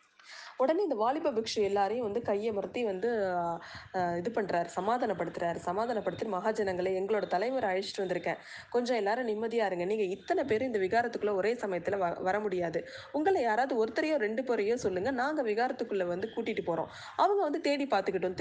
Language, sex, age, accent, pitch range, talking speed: Tamil, female, 20-39, native, 185-255 Hz, 150 wpm